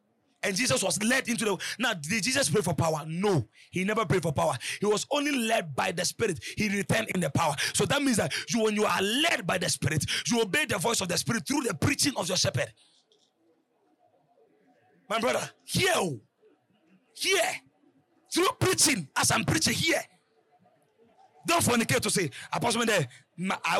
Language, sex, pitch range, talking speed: English, male, 175-245 Hz, 180 wpm